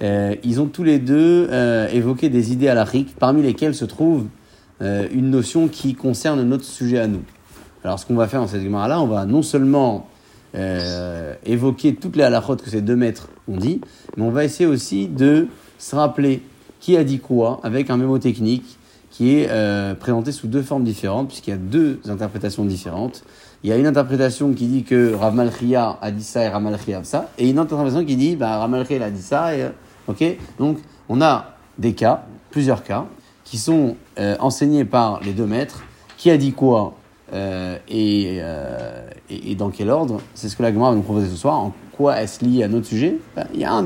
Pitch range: 110-145 Hz